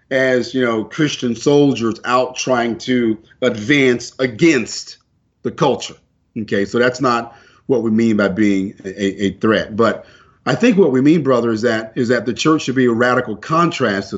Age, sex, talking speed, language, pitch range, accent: 40-59, male, 180 wpm, English, 110-140 Hz, American